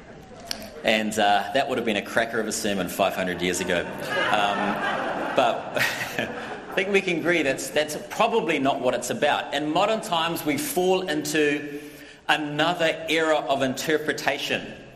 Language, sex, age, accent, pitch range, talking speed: English, male, 40-59, Australian, 135-205 Hz, 150 wpm